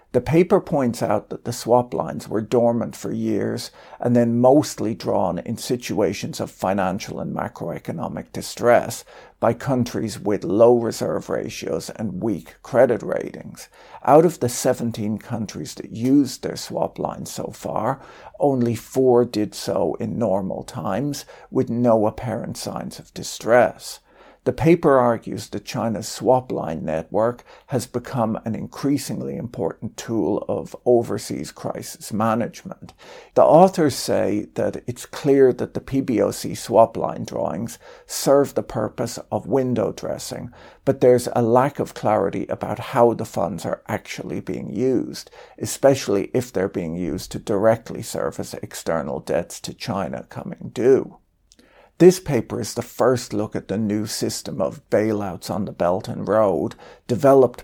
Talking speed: 150 wpm